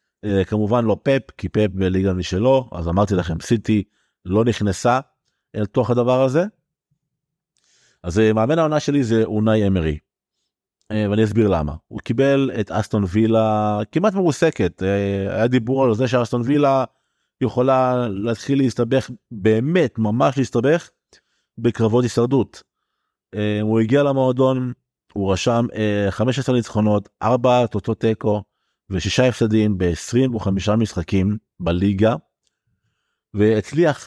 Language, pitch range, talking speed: Hebrew, 105-130 Hz, 115 wpm